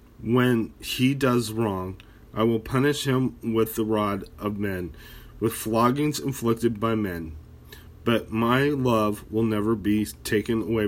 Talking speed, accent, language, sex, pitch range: 145 wpm, American, English, male, 100-125 Hz